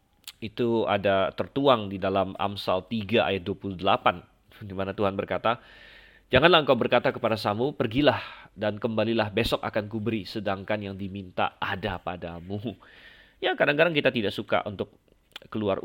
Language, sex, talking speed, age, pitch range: Indonesian, male, 135 wpm, 30-49, 100-125 Hz